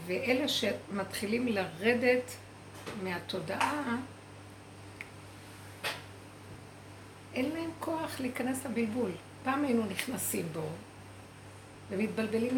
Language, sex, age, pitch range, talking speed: Hebrew, female, 60-79, 160-250 Hz, 65 wpm